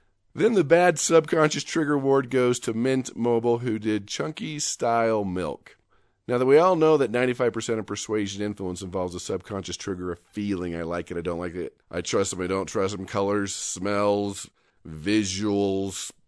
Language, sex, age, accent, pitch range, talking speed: English, male, 40-59, American, 100-135 Hz, 175 wpm